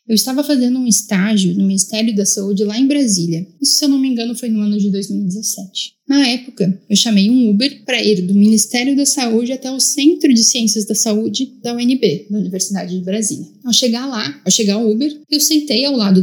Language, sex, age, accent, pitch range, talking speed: Portuguese, female, 10-29, Brazilian, 205-250 Hz, 220 wpm